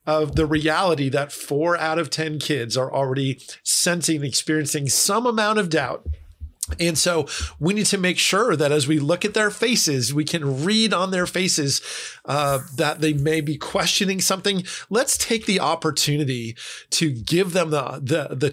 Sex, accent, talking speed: male, American, 180 wpm